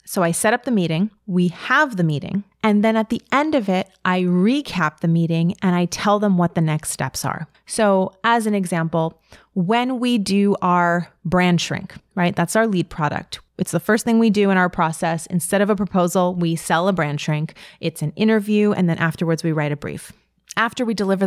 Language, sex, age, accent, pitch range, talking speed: English, female, 30-49, American, 165-210 Hz, 215 wpm